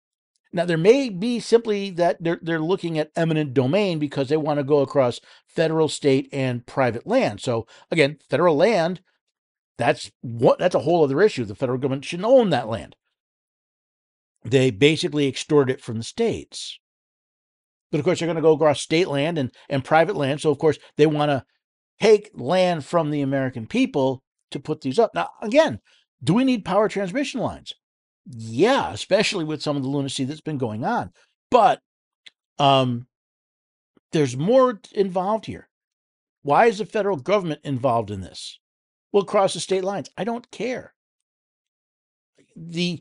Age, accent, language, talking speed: 50-69, American, English, 165 wpm